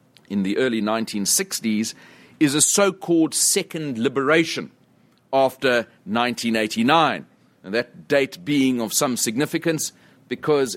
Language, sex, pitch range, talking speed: English, male, 105-160 Hz, 105 wpm